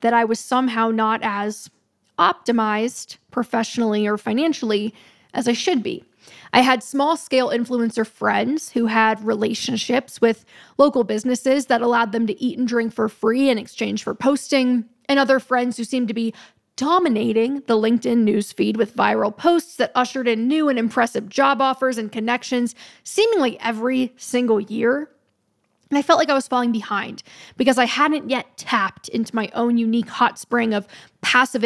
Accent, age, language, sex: American, 10-29, English, female